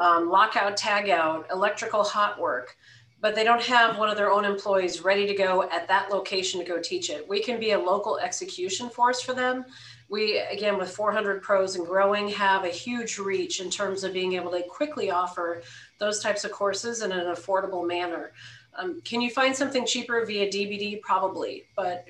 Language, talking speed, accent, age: English, 195 wpm, American, 40-59